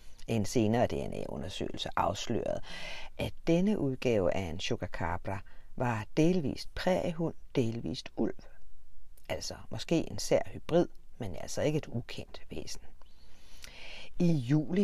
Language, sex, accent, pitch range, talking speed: Danish, female, native, 100-155 Hz, 115 wpm